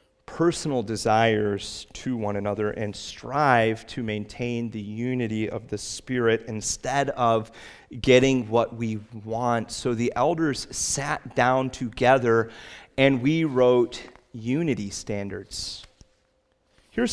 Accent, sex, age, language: American, male, 30-49, English